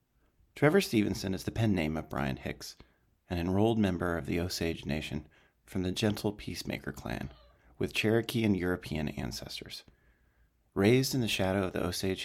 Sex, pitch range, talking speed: male, 80-105 Hz, 160 wpm